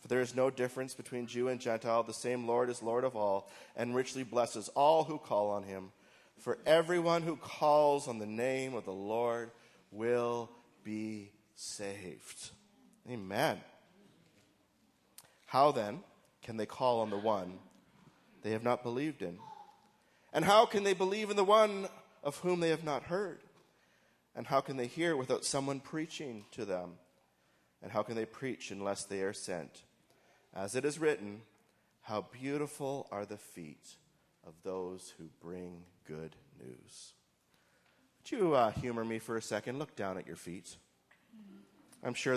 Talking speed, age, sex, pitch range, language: 160 wpm, 30-49, male, 105-155 Hz, English